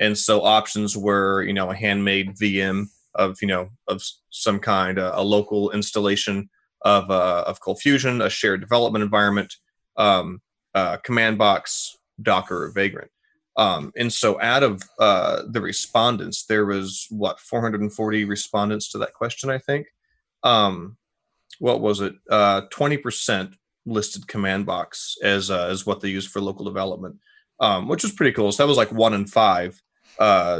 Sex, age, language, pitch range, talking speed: male, 30-49, English, 100-115 Hz, 165 wpm